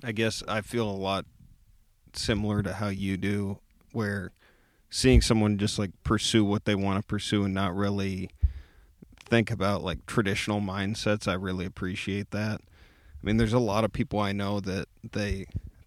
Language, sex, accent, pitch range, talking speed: English, male, American, 100-110 Hz, 175 wpm